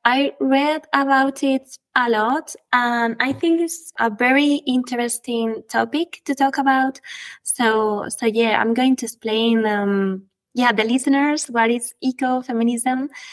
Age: 20-39